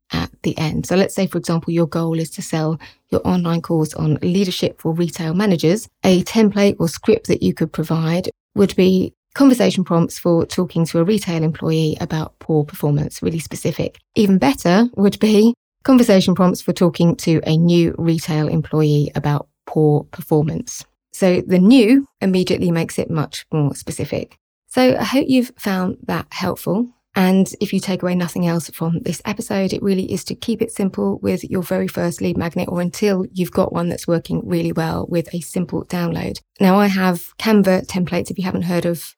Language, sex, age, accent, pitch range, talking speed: English, female, 30-49, British, 165-195 Hz, 185 wpm